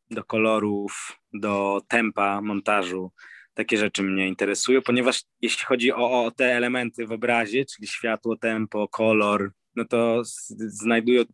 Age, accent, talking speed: 20-39, native, 130 wpm